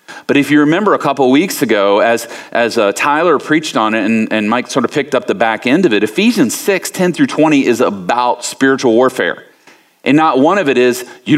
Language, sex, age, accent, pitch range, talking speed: English, male, 40-59, American, 125-165 Hz, 230 wpm